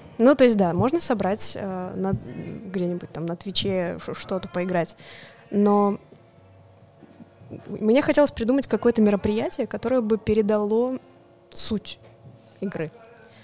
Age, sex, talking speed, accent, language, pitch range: 20-39, female, 105 wpm, native, Russian, 190-235 Hz